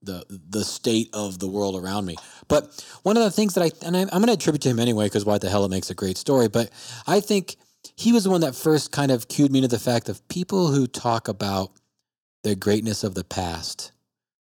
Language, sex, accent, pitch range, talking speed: English, male, American, 105-140 Hz, 240 wpm